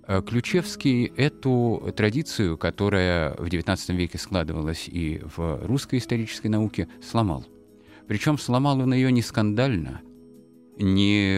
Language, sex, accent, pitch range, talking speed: Russian, male, native, 90-115 Hz, 110 wpm